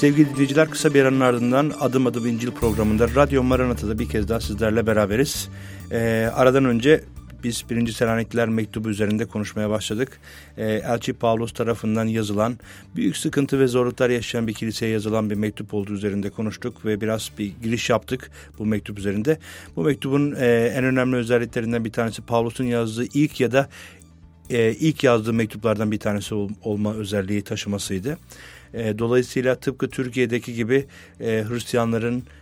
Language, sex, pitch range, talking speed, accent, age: Turkish, male, 105-125 Hz, 150 wpm, native, 50-69